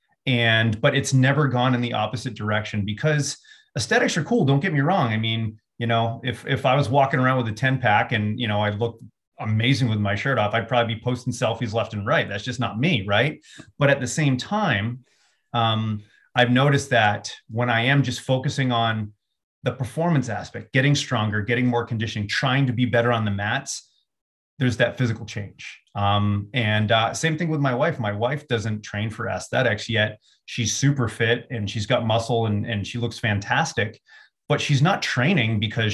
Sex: male